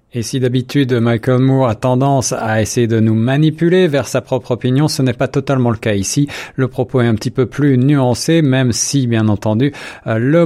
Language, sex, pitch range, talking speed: French, male, 115-140 Hz, 210 wpm